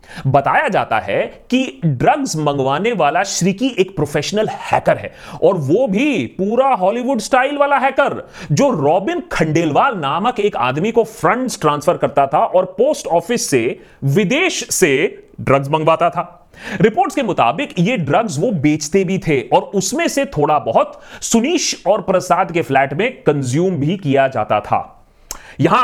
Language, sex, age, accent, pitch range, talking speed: Hindi, male, 30-49, native, 155-245 Hz, 155 wpm